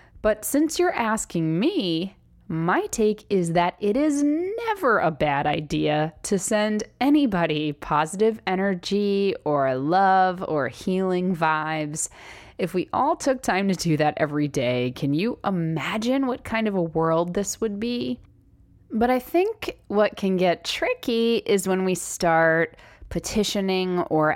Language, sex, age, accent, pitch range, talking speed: English, female, 20-39, American, 155-230 Hz, 145 wpm